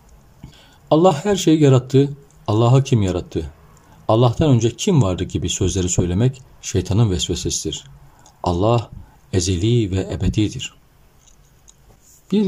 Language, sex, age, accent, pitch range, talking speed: Turkish, male, 50-69, native, 90-135 Hz, 100 wpm